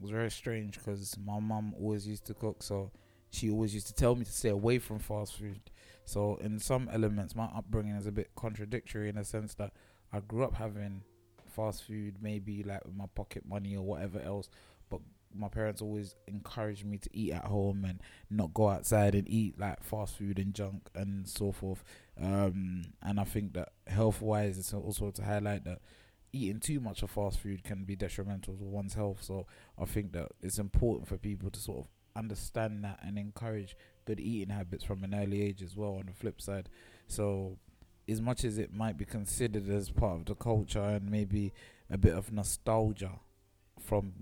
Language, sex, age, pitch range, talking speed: English, male, 20-39, 100-105 Hz, 200 wpm